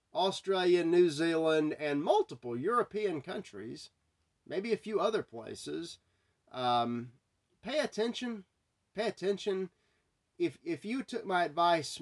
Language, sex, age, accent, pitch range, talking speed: English, male, 40-59, American, 130-210 Hz, 115 wpm